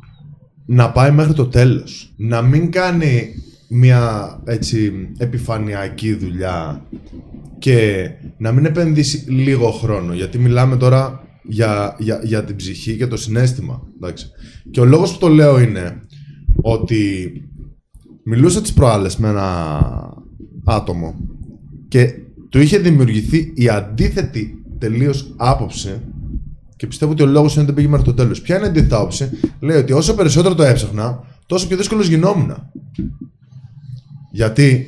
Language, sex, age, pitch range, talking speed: Greek, male, 20-39, 110-150 Hz, 135 wpm